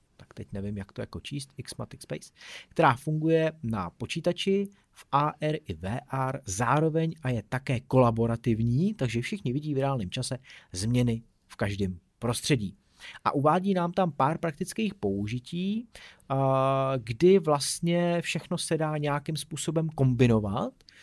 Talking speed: 130 wpm